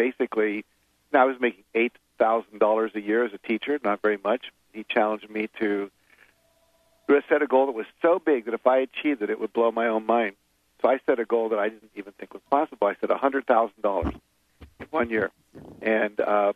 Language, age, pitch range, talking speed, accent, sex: English, 50-69, 105-115 Hz, 220 wpm, American, male